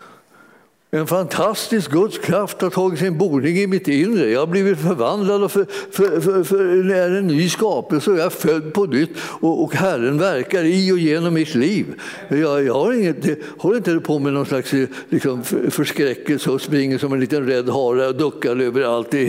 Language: Swedish